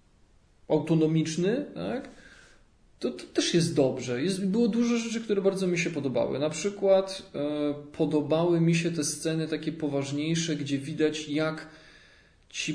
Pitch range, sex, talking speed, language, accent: 145-170 Hz, male, 125 wpm, Polish, native